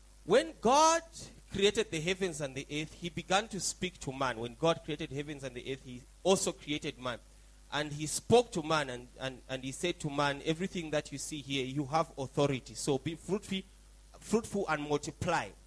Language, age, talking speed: English, 30-49, 190 wpm